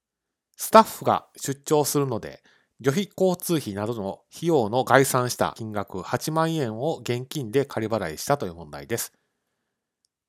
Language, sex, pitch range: Japanese, male, 105-155 Hz